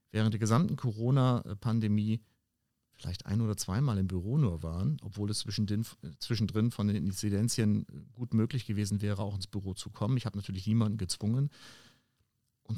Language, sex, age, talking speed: German, male, 40-59, 155 wpm